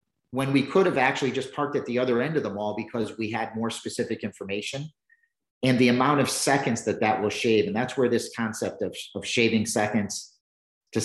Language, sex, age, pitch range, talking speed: English, male, 40-59, 110-145 Hz, 210 wpm